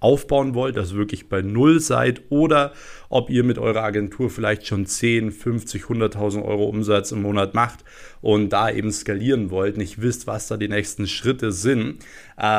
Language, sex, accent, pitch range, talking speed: German, male, German, 105-125 Hz, 175 wpm